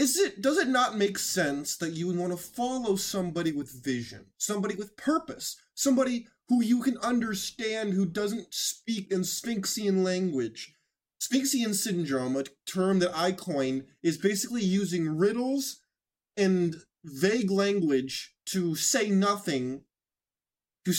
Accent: American